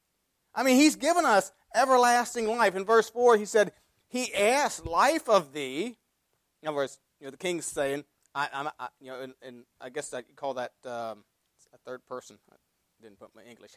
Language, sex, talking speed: English, male, 205 wpm